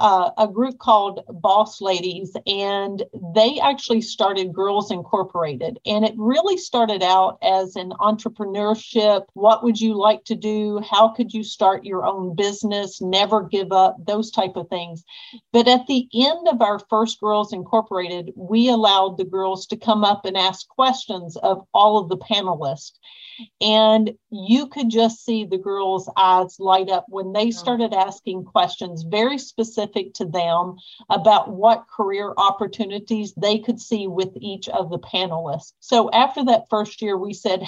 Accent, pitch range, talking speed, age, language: American, 190-225 Hz, 160 wpm, 40-59, English